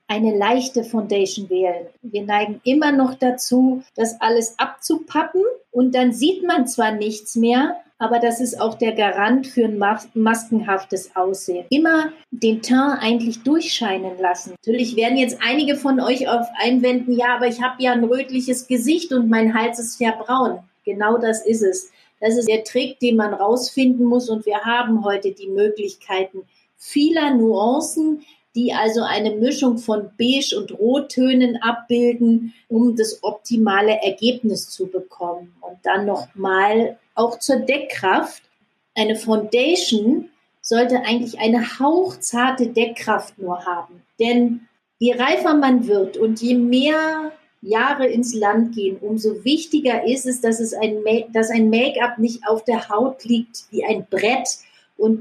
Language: German